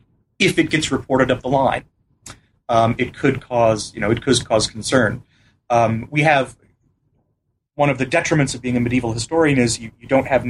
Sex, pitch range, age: male, 120-140 Hz, 30-49